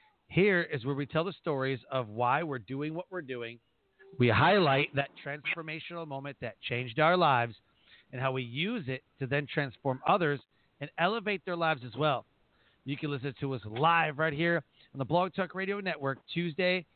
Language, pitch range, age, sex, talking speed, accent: English, 135-175 Hz, 40-59, male, 190 wpm, American